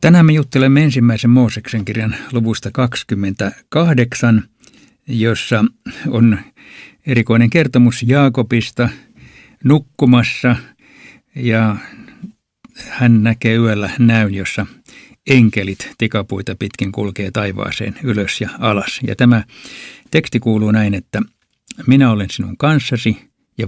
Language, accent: Finnish, native